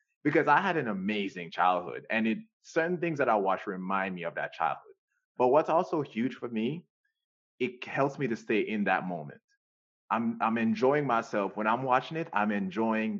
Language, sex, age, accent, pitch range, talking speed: English, male, 20-39, American, 110-160 Hz, 190 wpm